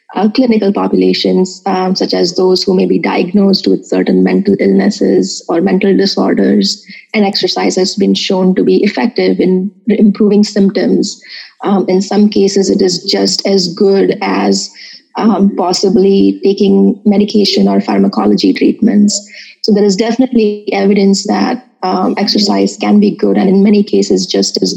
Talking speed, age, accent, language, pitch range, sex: 155 wpm, 20-39, Indian, English, 170-210 Hz, female